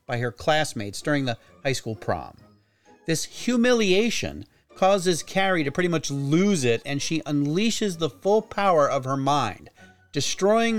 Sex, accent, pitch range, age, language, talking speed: male, American, 120-195 Hz, 40-59, English, 150 wpm